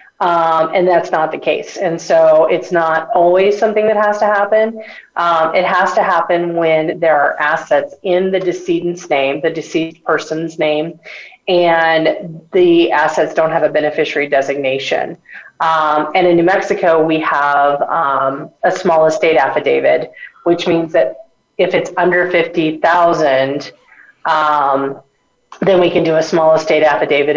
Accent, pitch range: American, 145-175 Hz